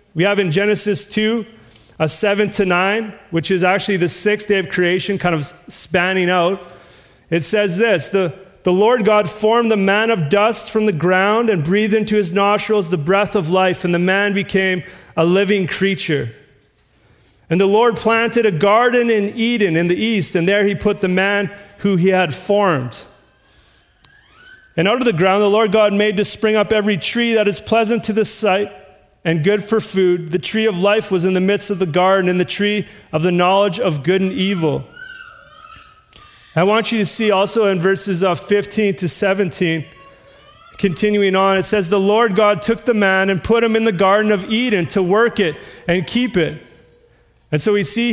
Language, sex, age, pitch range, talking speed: English, male, 30-49, 180-210 Hz, 195 wpm